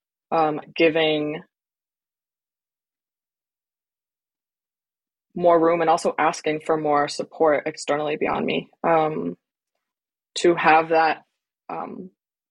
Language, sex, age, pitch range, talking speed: English, female, 20-39, 150-170 Hz, 85 wpm